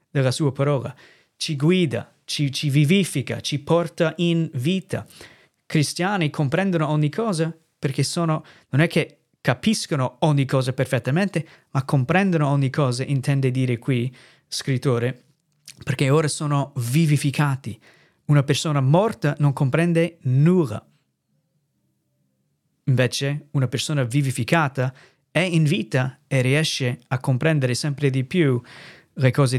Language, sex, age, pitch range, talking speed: Italian, male, 30-49, 130-165 Hz, 120 wpm